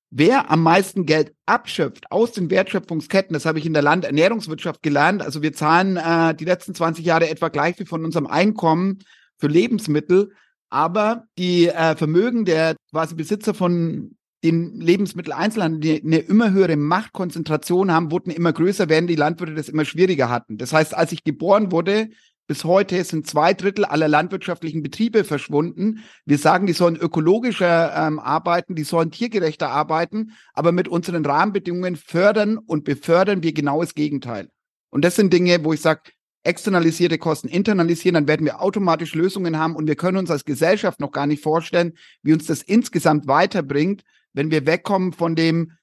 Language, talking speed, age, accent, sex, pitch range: German, 170 wpm, 30-49, German, male, 155-185 Hz